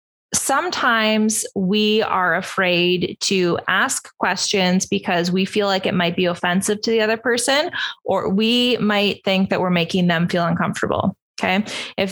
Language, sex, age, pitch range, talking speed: English, female, 20-39, 185-225 Hz, 155 wpm